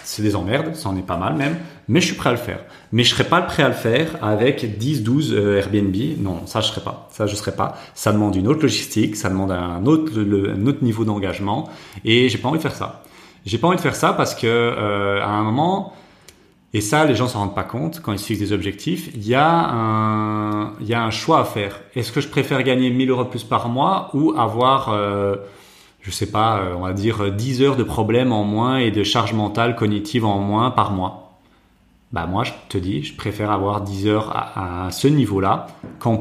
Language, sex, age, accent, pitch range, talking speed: French, male, 30-49, French, 100-125 Hz, 240 wpm